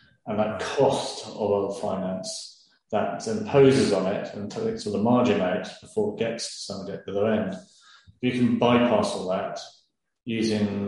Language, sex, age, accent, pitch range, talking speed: English, male, 30-49, British, 100-110 Hz, 170 wpm